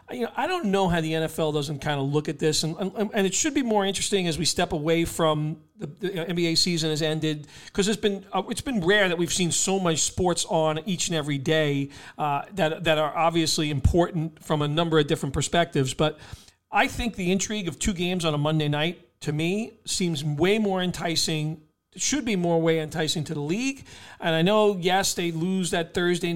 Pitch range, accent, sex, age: 150-180 Hz, American, male, 40-59